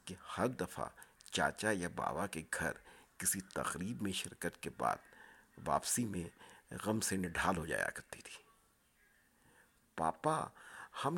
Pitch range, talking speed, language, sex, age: 85-110 Hz, 135 wpm, Urdu, male, 60-79